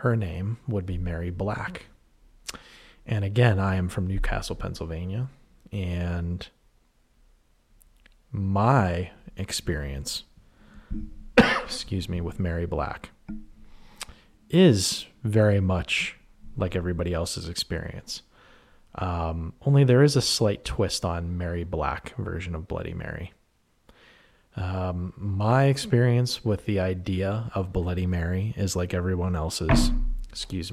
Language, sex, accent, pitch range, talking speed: English, male, American, 85-110 Hz, 110 wpm